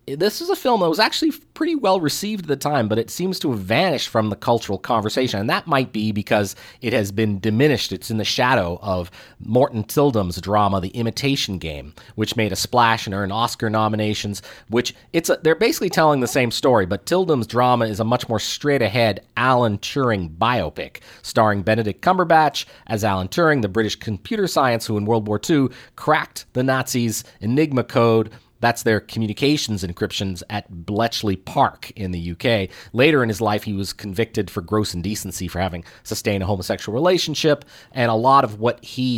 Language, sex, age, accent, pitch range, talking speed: English, male, 30-49, American, 105-135 Hz, 190 wpm